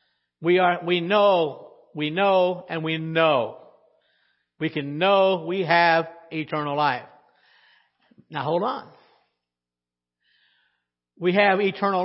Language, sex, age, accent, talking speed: English, male, 60-79, American, 110 wpm